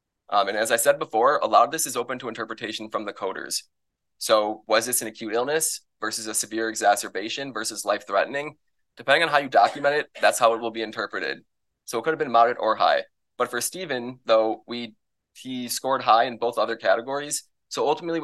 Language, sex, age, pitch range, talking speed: English, male, 20-39, 110-140 Hz, 210 wpm